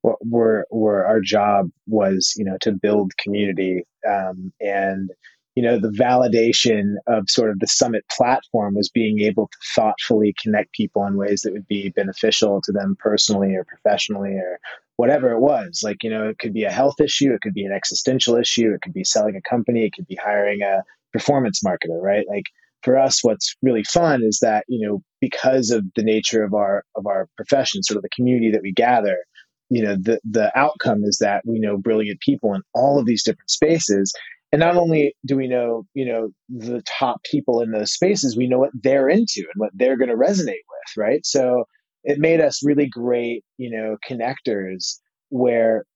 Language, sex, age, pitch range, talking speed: English, male, 30-49, 100-125 Hz, 200 wpm